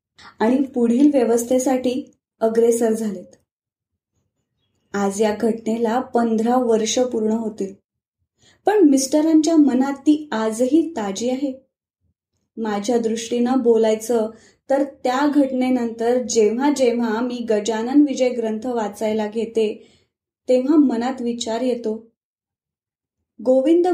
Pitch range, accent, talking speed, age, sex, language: 220-260 Hz, native, 95 wpm, 20-39, female, Marathi